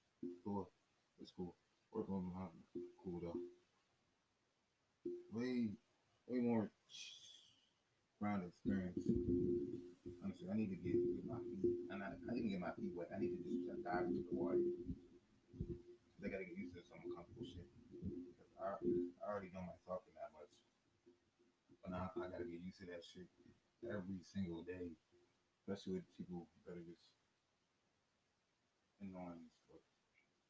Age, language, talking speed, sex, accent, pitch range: 30-49, English, 145 wpm, male, American, 90-115 Hz